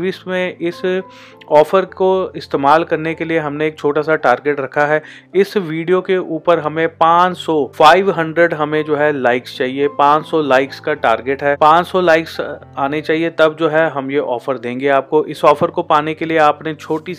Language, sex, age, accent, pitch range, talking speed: Hindi, male, 30-49, native, 140-160 Hz, 180 wpm